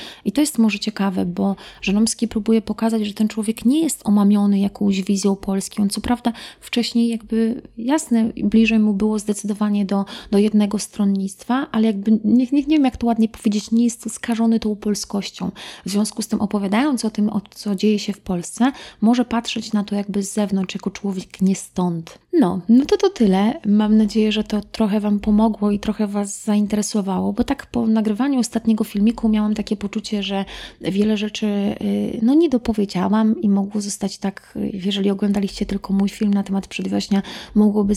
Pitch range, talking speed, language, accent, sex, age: 200-225 Hz, 180 wpm, Polish, native, female, 20-39